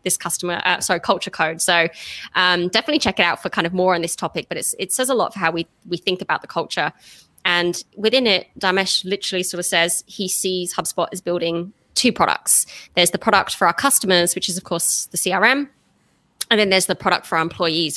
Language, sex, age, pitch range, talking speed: English, female, 20-39, 170-190 Hz, 225 wpm